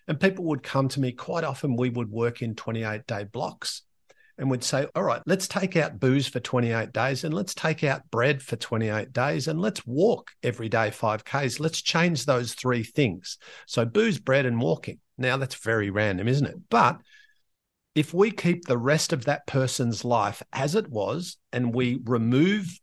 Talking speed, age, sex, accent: 190 wpm, 50-69, male, Australian